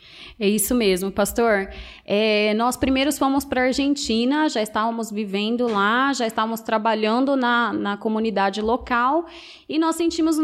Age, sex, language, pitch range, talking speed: 20-39, female, Portuguese, 225-285 Hz, 145 wpm